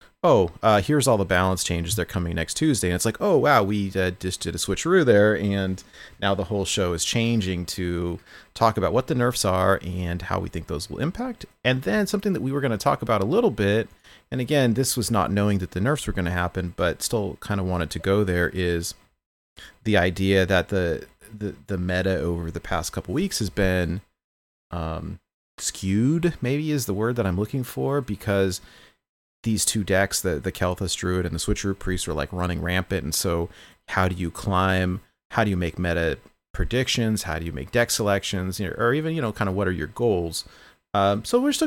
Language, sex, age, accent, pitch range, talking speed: English, male, 30-49, American, 90-120 Hz, 220 wpm